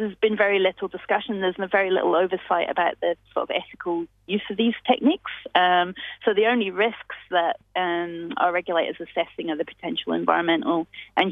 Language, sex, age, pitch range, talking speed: English, female, 30-49, 170-195 Hz, 185 wpm